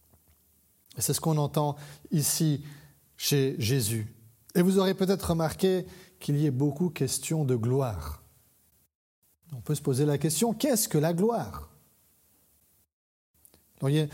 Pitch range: 130-165 Hz